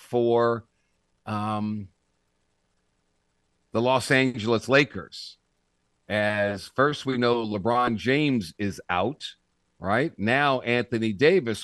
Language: English